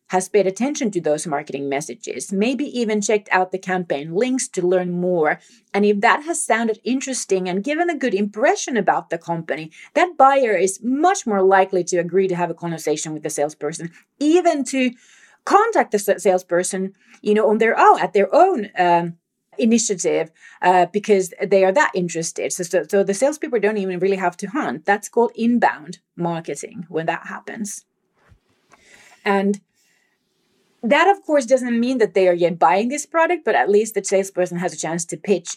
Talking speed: 180 wpm